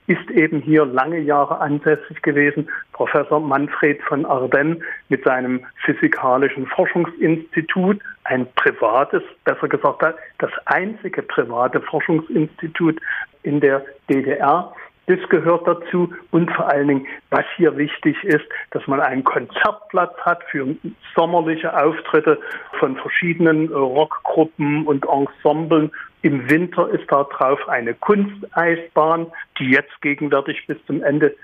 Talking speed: 120 wpm